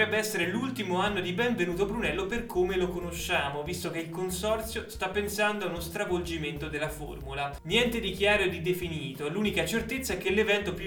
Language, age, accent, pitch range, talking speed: Italian, 20-39, native, 155-205 Hz, 180 wpm